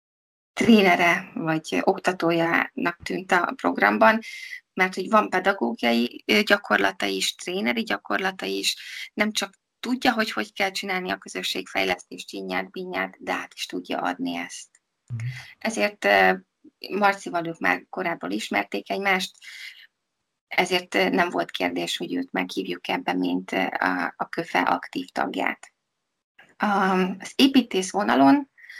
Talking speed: 115 wpm